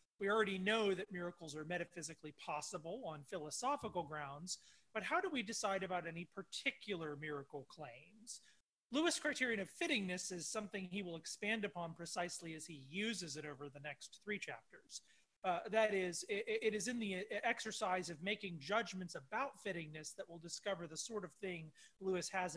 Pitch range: 170-220 Hz